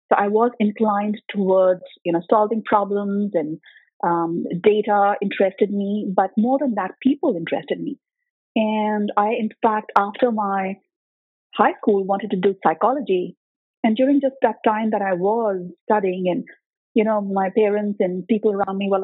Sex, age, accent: female, 30-49, Indian